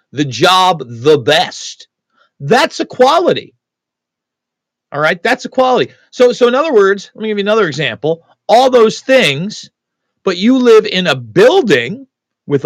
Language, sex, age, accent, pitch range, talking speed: English, male, 40-59, American, 145-240 Hz, 145 wpm